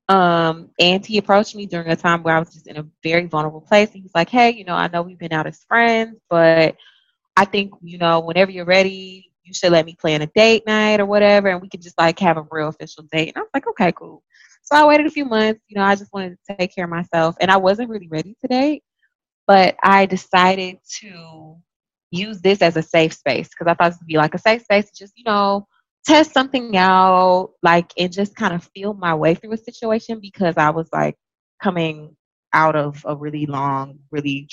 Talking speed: 235 wpm